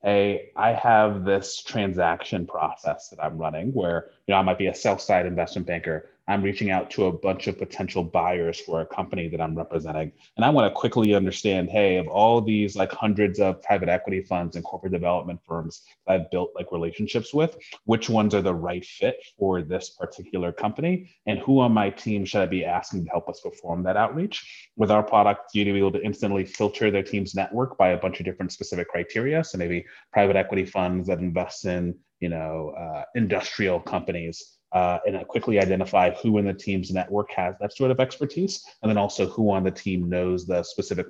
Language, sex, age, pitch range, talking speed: English, male, 30-49, 90-105 Hz, 210 wpm